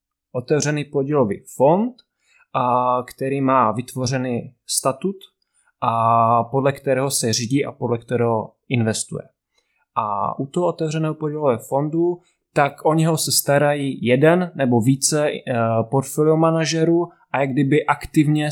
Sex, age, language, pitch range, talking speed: male, 20-39, Czech, 125-150 Hz, 115 wpm